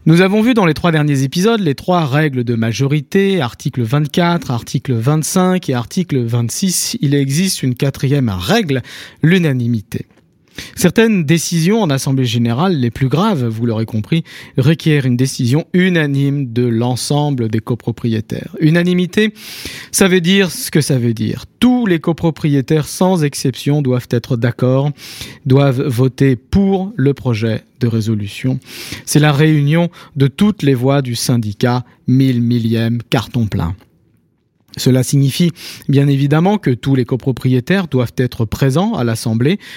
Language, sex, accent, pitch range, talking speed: French, male, French, 120-160 Hz, 140 wpm